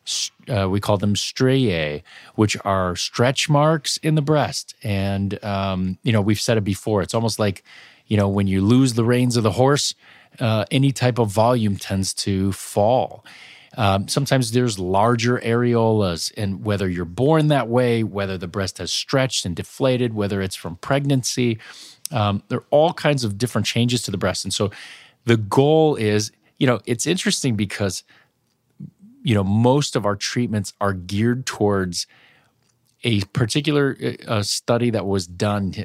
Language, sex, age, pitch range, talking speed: English, male, 30-49, 100-125 Hz, 165 wpm